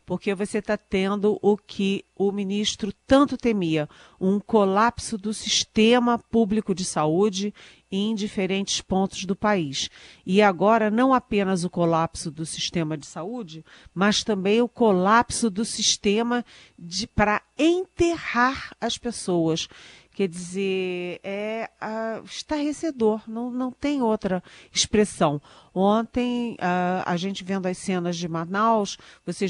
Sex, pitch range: female, 190-230 Hz